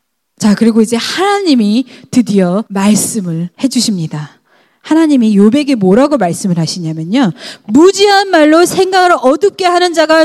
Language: Korean